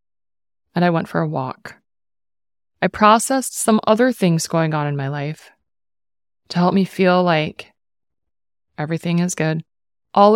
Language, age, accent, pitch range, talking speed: English, 20-39, American, 165-195 Hz, 145 wpm